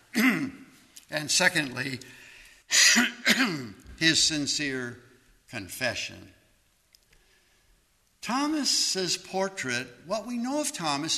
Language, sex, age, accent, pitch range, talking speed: English, male, 60-79, American, 140-195 Hz, 65 wpm